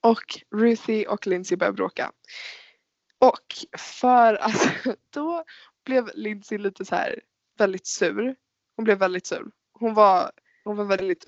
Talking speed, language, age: 140 wpm, Swedish, 20-39